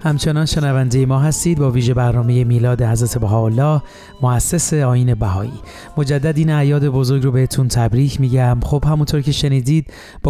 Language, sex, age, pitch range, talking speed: Persian, male, 30-49, 125-145 Hz, 150 wpm